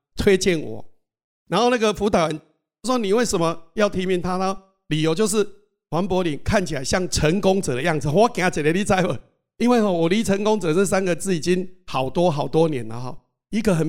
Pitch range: 150-200 Hz